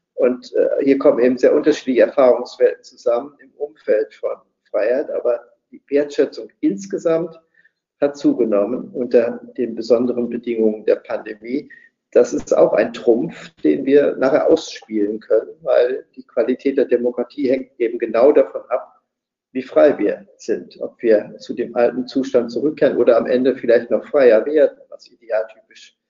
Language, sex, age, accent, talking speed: German, male, 50-69, German, 150 wpm